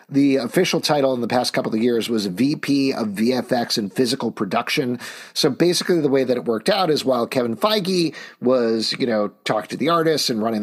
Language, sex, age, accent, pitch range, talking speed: English, male, 40-59, American, 120-150 Hz, 210 wpm